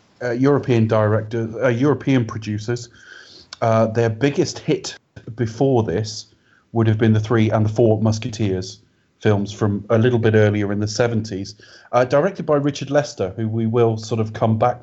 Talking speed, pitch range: 170 wpm, 105-125 Hz